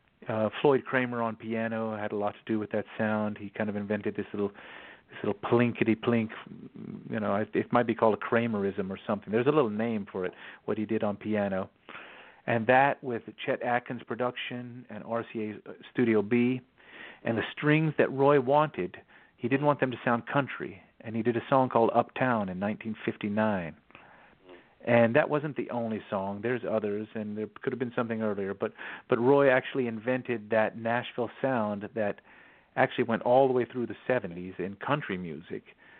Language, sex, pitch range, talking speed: English, male, 110-125 Hz, 185 wpm